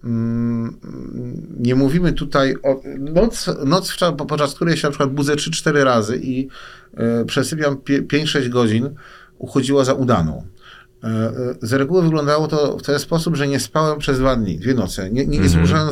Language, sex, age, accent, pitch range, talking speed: Polish, male, 40-59, native, 115-145 Hz, 160 wpm